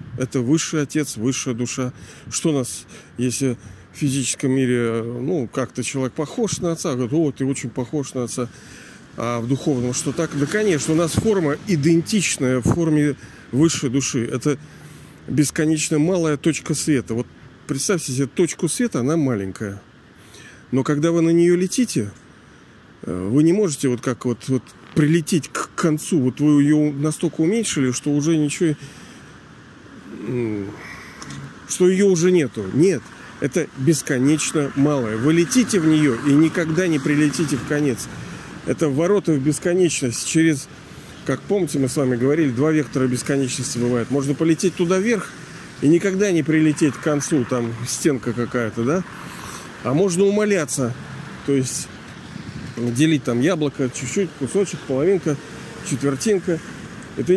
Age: 40-59